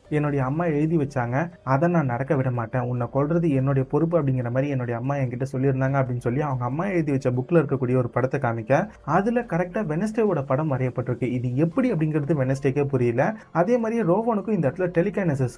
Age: 30-49